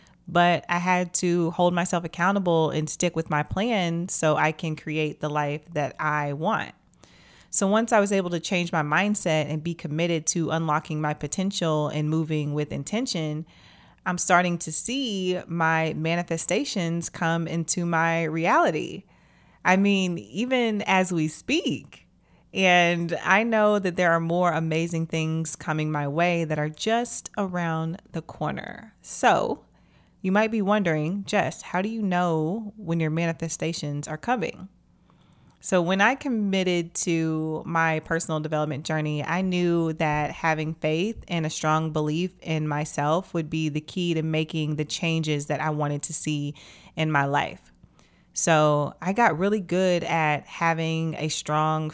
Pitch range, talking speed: 155-180 Hz, 155 wpm